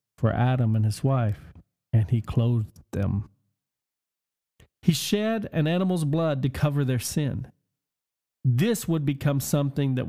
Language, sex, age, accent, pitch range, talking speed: English, male, 40-59, American, 115-150 Hz, 135 wpm